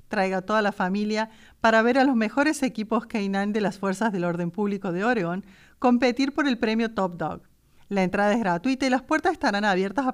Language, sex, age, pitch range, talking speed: English, female, 40-59, 190-255 Hz, 215 wpm